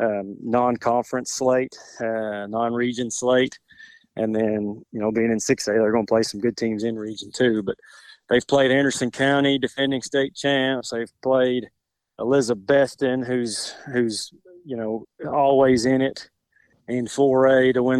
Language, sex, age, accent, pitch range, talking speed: English, male, 30-49, American, 110-130 Hz, 150 wpm